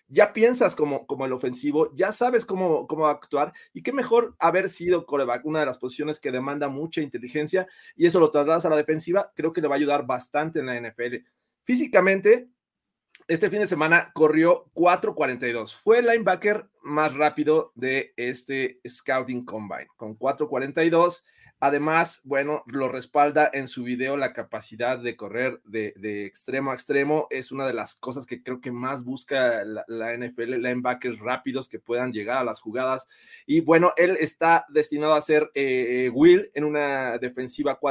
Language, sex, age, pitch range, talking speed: Spanish, male, 30-49, 130-165 Hz, 175 wpm